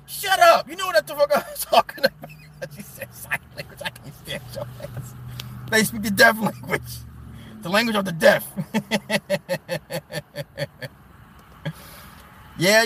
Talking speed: 150 wpm